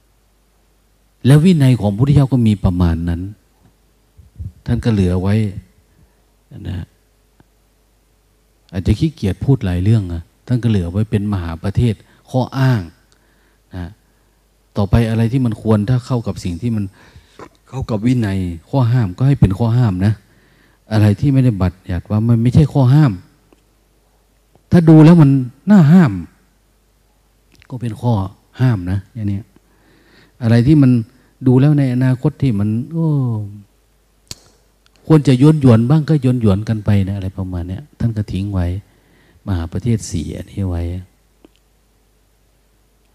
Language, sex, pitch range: Thai, male, 95-125 Hz